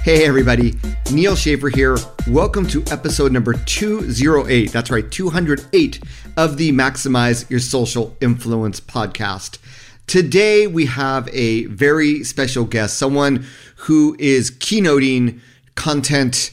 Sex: male